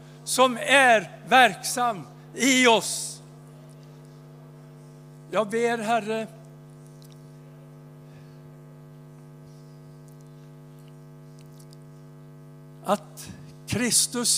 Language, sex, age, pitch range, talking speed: English, male, 60-79, 145-190 Hz, 40 wpm